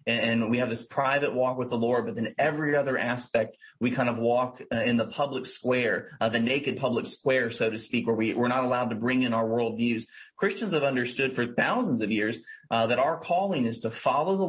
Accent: American